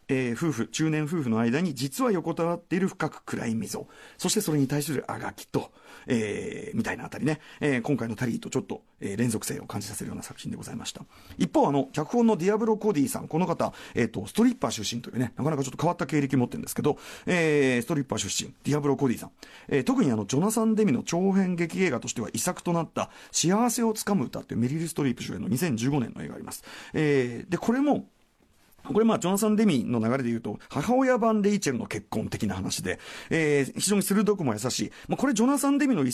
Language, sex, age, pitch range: Japanese, male, 40-59, 130-215 Hz